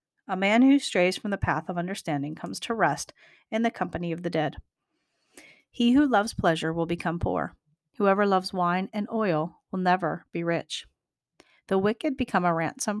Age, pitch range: 40-59, 165-210 Hz